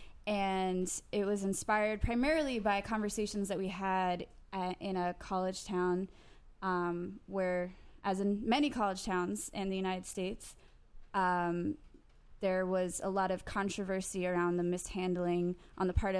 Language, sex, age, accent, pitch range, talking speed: English, female, 20-39, American, 185-230 Hz, 145 wpm